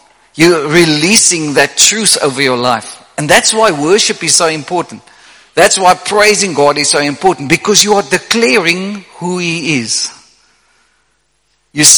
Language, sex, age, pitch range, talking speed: English, male, 50-69, 145-210 Hz, 145 wpm